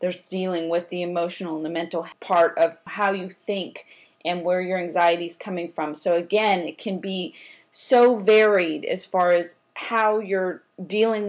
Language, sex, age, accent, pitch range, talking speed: English, female, 30-49, American, 175-200 Hz, 175 wpm